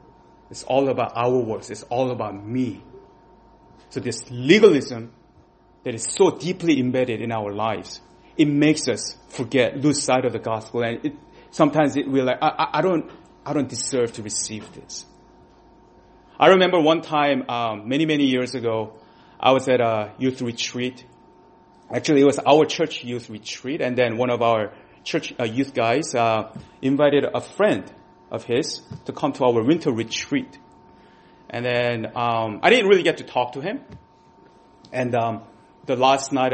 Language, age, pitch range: English, 30-49, 115-140 Hz